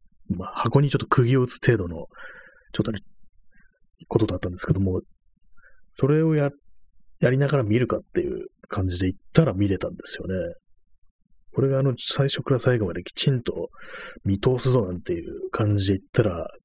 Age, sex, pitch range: 30-49, male, 90-130 Hz